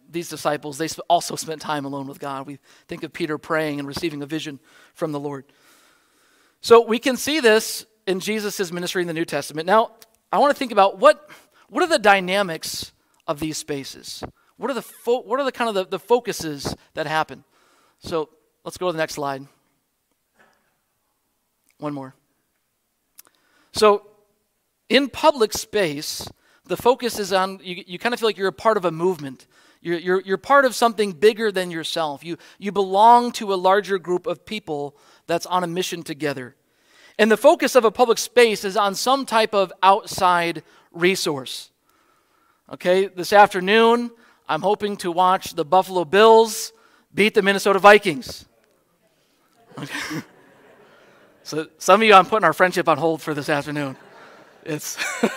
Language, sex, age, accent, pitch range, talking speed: English, male, 40-59, American, 160-220 Hz, 170 wpm